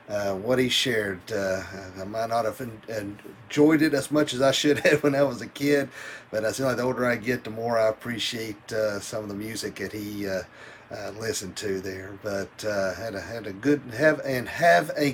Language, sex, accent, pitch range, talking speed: English, male, American, 115-150 Hz, 230 wpm